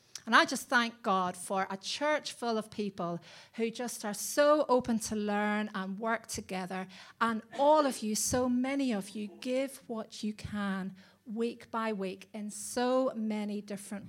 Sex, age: female, 40-59